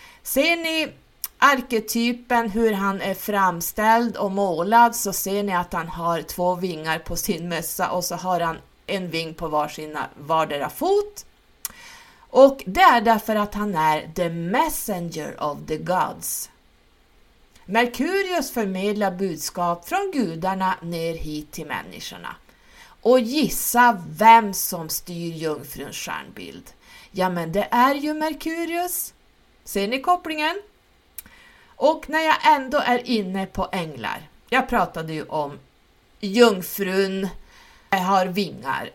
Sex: female